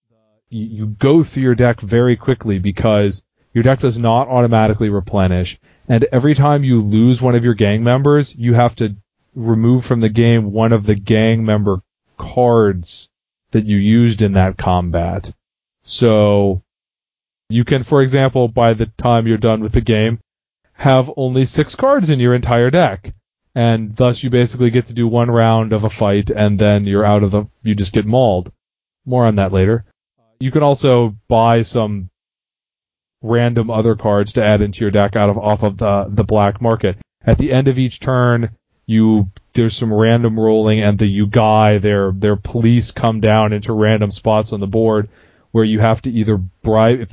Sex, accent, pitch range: male, American, 105-120 Hz